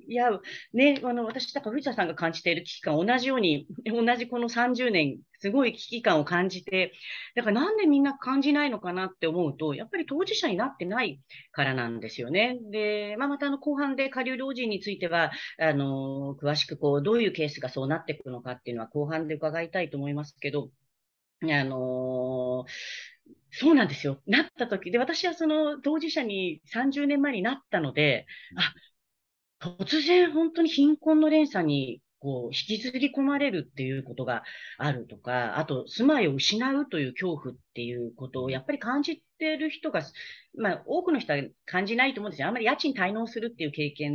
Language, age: Japanese, 40-59